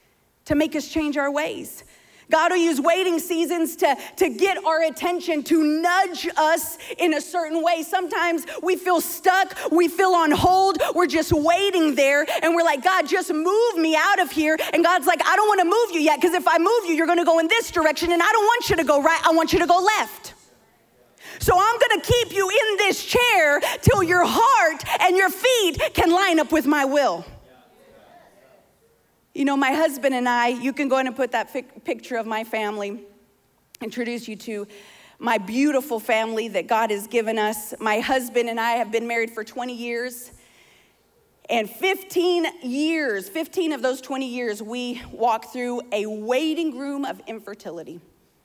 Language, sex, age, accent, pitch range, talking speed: English, female, 40-59, American, 245-350 Hz, 190 wpm